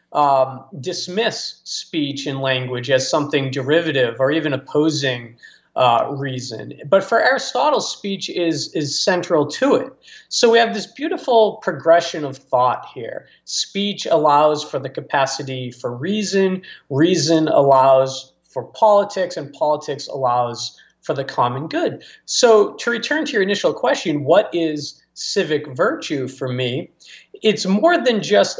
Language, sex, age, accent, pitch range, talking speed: English, male, 40-59, American, 135-190 Hz, 140 wpm